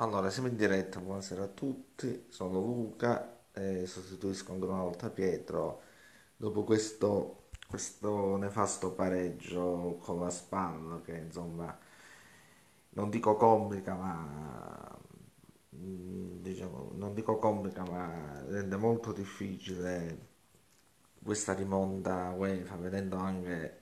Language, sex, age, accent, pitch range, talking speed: Italian, male, 30-49, native, 90-105 Hz, 110 wpm